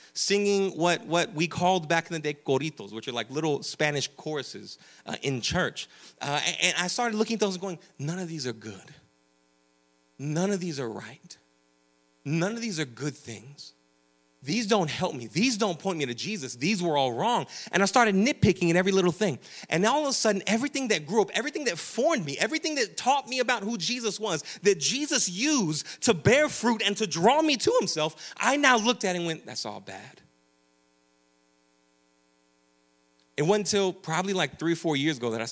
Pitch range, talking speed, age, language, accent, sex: 130-190 Hz, 205 wpm, 30-49, English, American, male